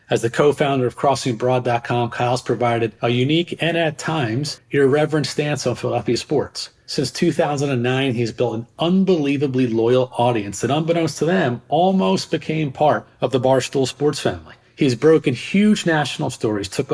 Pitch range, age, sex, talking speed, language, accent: 120-150 Hz, 40-59, male, 150 wpm, English, American